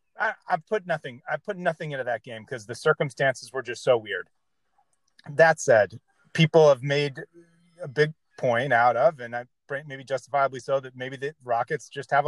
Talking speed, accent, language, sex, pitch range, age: 180 wpm, American, English, male, 125-160 Hz, 30-49